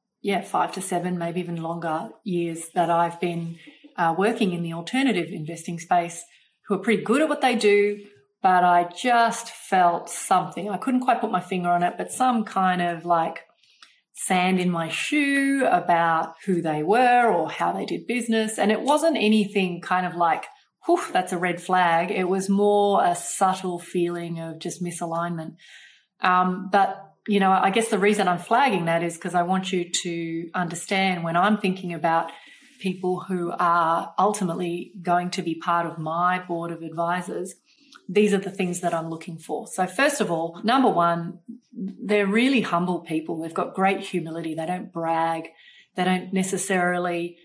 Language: English